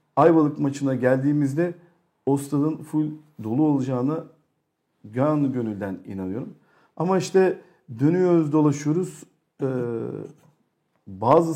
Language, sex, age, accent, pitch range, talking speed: Turkish, male, 50-69, native, 120-150 Hz, 80 wpm